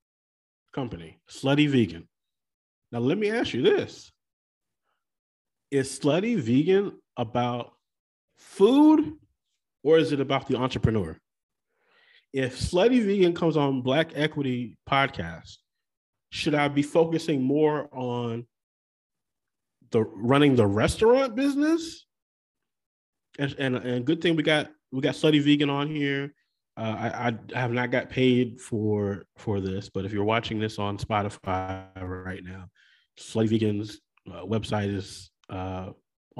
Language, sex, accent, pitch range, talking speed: English, male, American, 100-145 Hz, 125 wpm